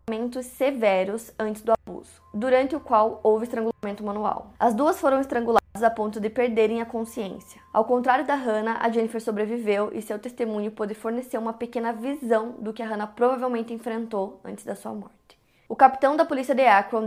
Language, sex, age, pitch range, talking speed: Portuguese, female, 20-39, 220-245 Hz, 180 wpm